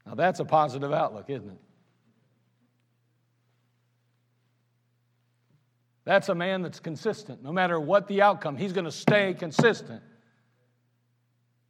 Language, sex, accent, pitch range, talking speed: English, male, American, 120-170 Hz, 115 wpm